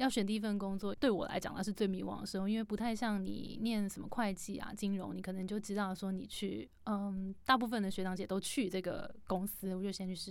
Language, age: Chinese, 20-39